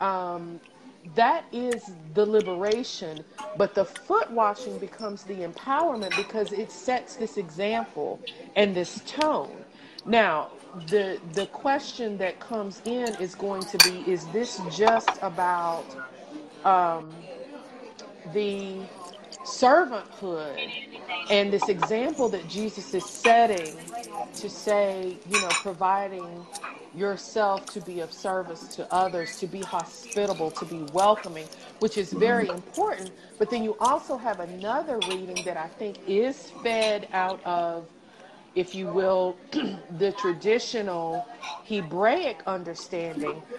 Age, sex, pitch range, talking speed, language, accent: 40-59, female, 180-220 Hz, 120 wpm, English, American